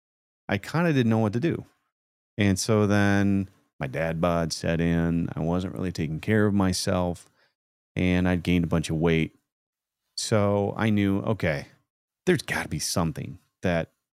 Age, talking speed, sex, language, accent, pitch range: 30-49, 165 wpm, male, English, American, 90-110 Hz